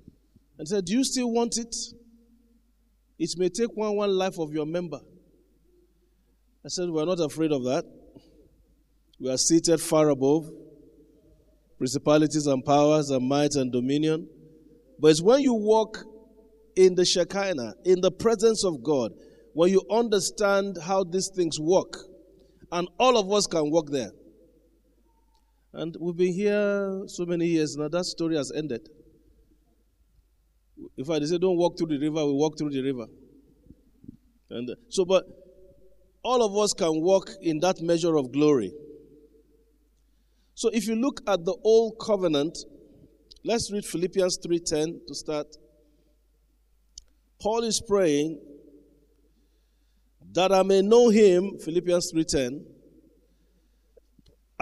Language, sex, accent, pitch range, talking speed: English, male, Nigerian, 150-200 Hz, 135 wpm